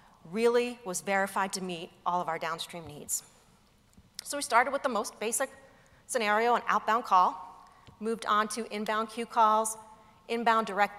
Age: 40-59